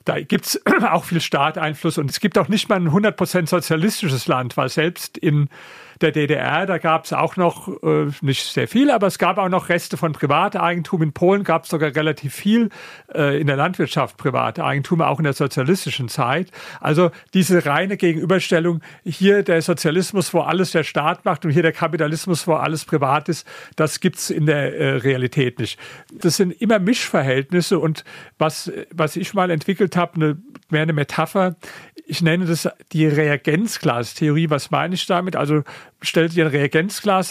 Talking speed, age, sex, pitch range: 180 wpm, 40-59, male, 155-185 Hz